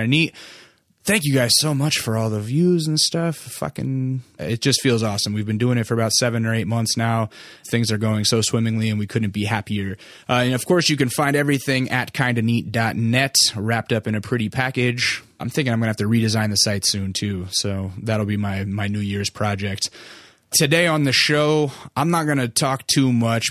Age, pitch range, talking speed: 20-39, 110-130 Hz, 220 wpm